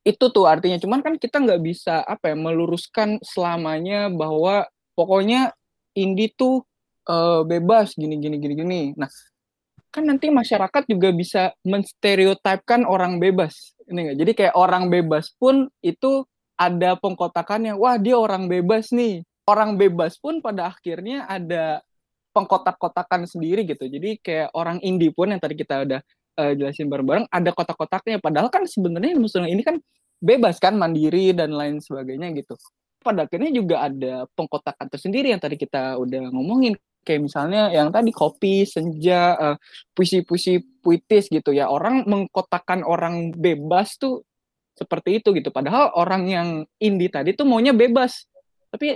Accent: native